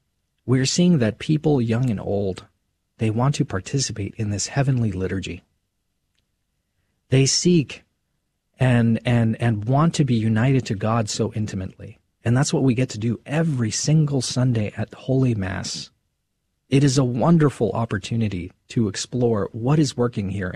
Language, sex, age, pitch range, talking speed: English, male, 40-59, 100-135 Hz, 150 wpm